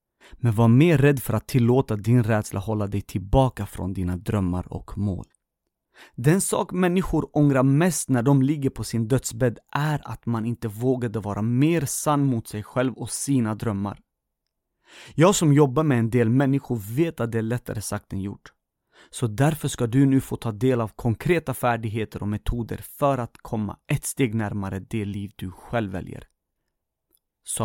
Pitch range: 100-135 Hz